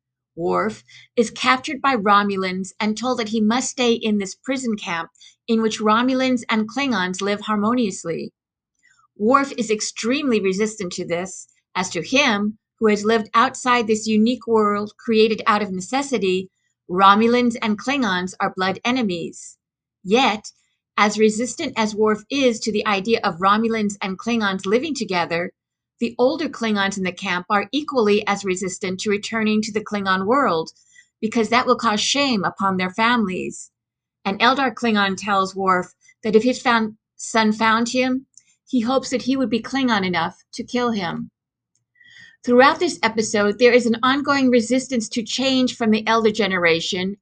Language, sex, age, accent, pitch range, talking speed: English, female, 50-69, American, 200-245 Hz, 160 wpm